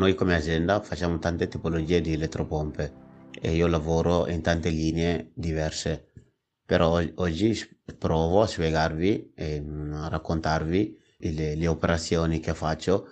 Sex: male